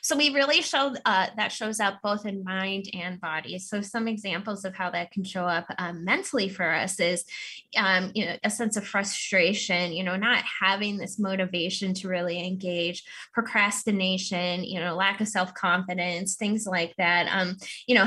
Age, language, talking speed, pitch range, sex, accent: 10-29, English, 185 wpm, 175-215 Hz, female, American